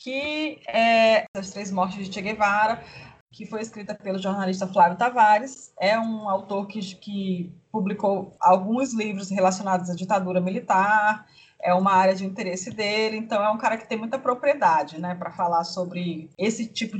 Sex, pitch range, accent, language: female, 190-240 Hz, Brazilian, Portuguese